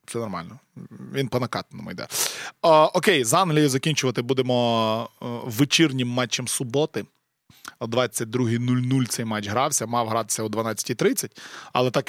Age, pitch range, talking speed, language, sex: 20-39, 120-150 Hz, 130 wpm, Ukrainian, male